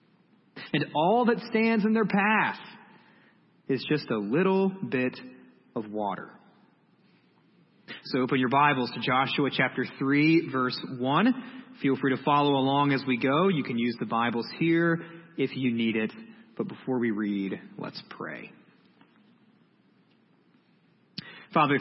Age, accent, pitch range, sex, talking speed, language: 30-49, American, 115-160 Hz, male, 135 wpm, English